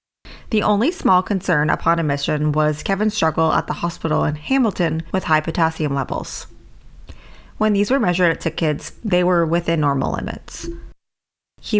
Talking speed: 155 wpm